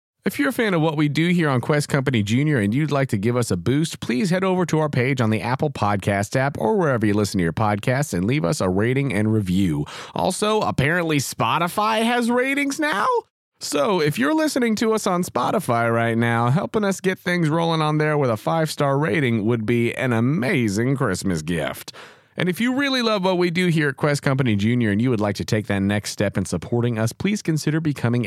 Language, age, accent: English, 30-49, American